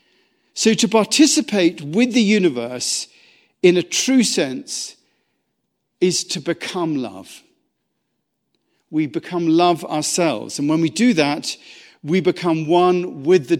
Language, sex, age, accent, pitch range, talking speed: English, male, 50-69, British, 150-205 Hz, 125 wpm